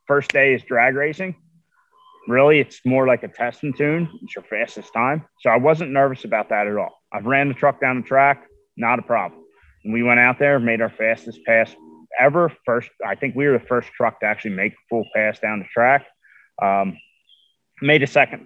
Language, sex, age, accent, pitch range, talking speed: English, male, 30-49, American, 115-145 Hz, 215 wpm